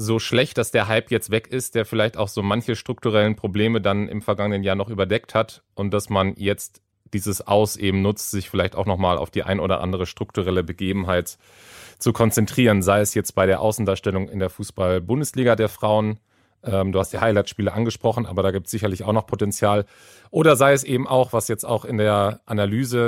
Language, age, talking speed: German, 30-49, 205 wpm